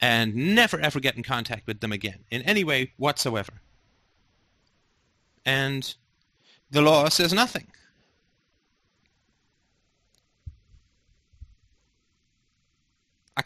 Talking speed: 85 wpm